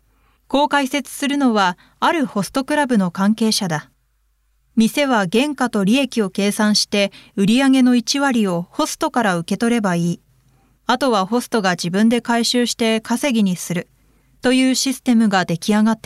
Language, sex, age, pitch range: Japanese, female, 20-39, 185-260 Hz